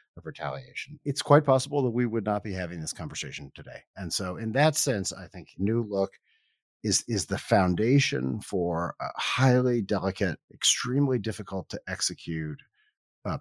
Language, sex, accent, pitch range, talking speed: English, male, American, 80-110 Hz, 160 wpm